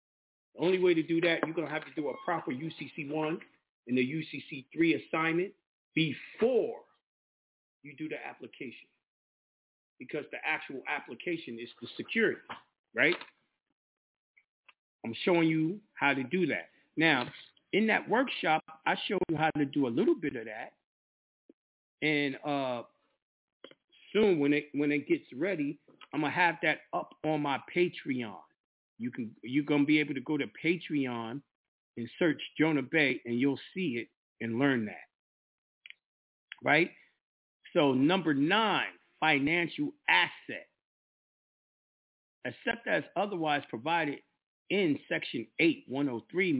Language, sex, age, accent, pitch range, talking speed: English, male, 40-59, American, 140-180 Hz, 135 wpm